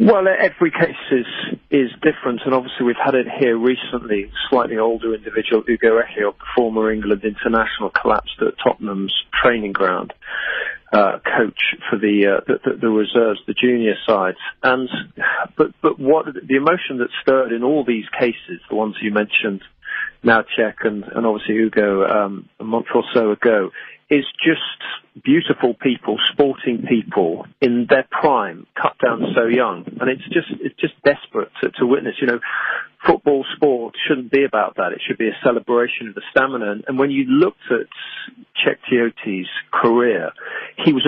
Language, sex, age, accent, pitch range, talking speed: English, male, 40-59, British, 110-140 Hz, 165 wpm